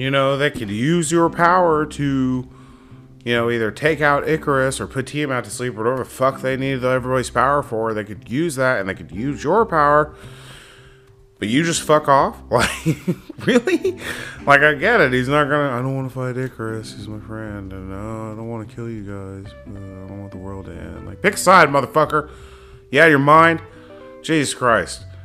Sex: male